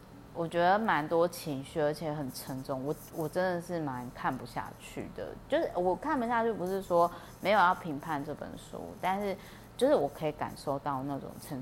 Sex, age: female, 20-39